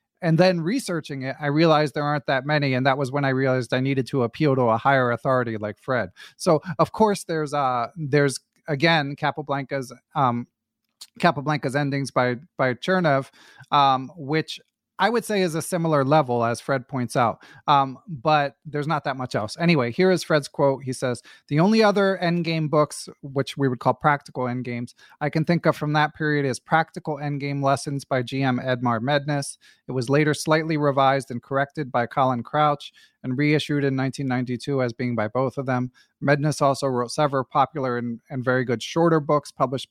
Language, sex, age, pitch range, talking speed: English, male, 30-49, 130-155 Hz, 190 wpm